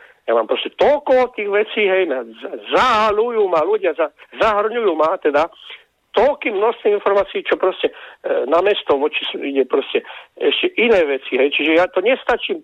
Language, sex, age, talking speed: Slovak, male, 50-69, 150 wpm